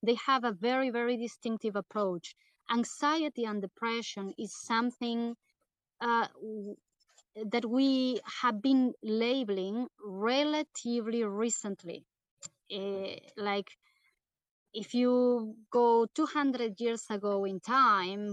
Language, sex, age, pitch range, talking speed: English, female, 20-39, 205-250 Hz, 100 wpm